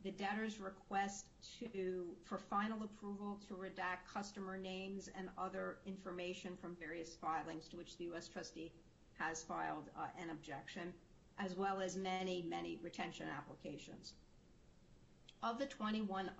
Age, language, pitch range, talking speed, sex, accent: 50-69, English, 175-200 Hz, 135 wpm, female, American